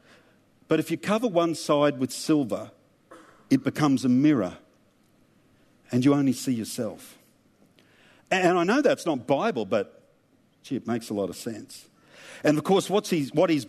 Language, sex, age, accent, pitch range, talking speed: English, male, 50-69, Australian, 140-210 Hz, 160 wpm